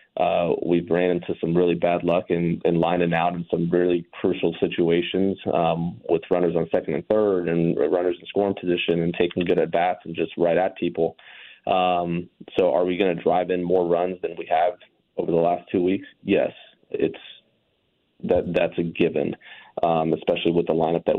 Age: 30-49